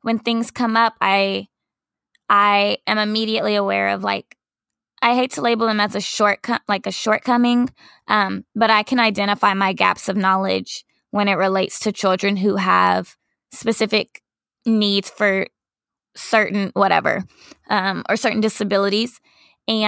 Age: 10-29